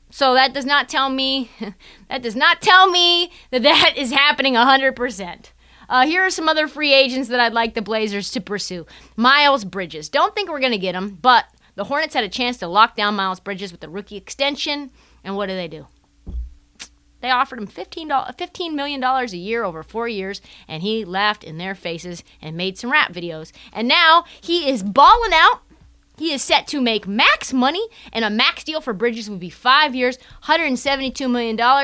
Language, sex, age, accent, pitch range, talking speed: English, female, 30-49, American, 210-290 Hz, 200 wpm